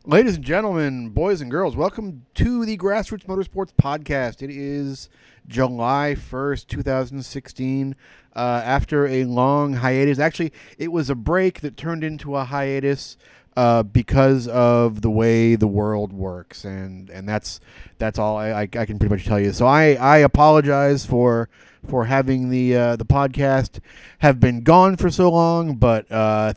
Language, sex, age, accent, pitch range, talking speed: English, male, 30-49, American, 110-140 Hz, 170 wpm